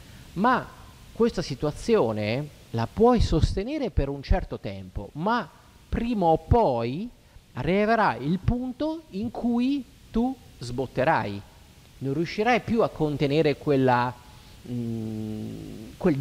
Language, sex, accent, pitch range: Italian, male, native, 120-180 Hz